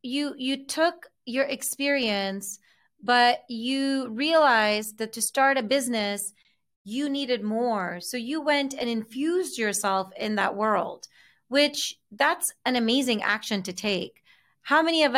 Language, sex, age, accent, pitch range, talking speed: English, female, 30-49, American, 215-275 Hz, 140 wpm